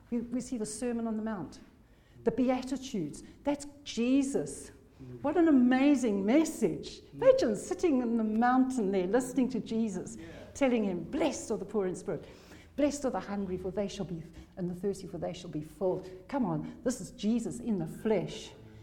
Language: English